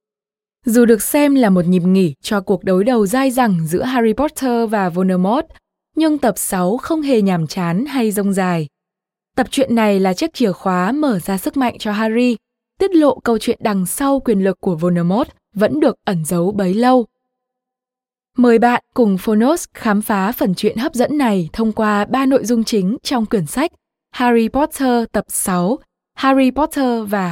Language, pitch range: Vietnamese, 195-255 Hz